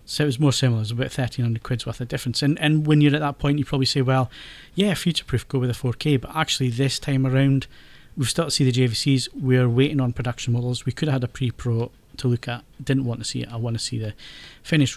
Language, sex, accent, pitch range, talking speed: English, male, British, 120-140 Hz, 275 wpm